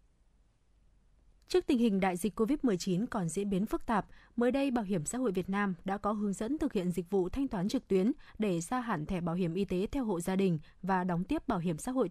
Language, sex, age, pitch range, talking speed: Vietnamese, female, 20-39, 190-245 Hz, 250 wpm